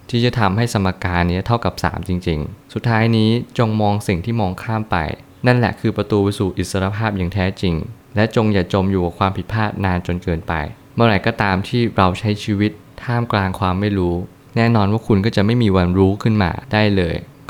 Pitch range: 95-110 Hz